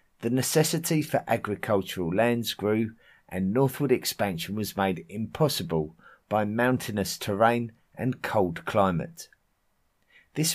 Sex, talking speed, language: male, 110 wpm, English